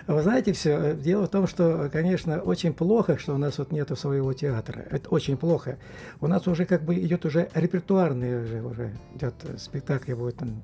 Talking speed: 190 wpm